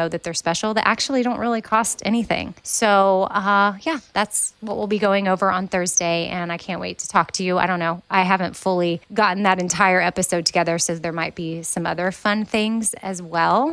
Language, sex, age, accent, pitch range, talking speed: English, female, 20-39, American, 180-225 Hz, 215 wpm